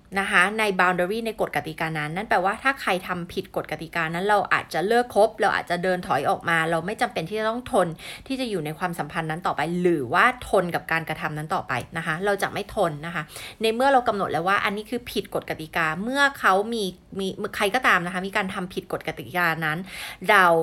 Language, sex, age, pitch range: Thai, female, 20-39, 170-220 Hz